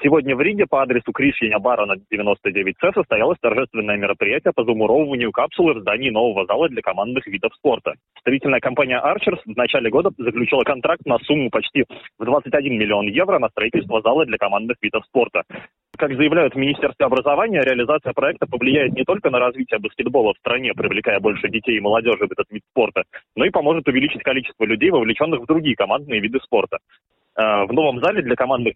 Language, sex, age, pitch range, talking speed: Russian, male, 20-39, 110-150 Hz, 175 wpm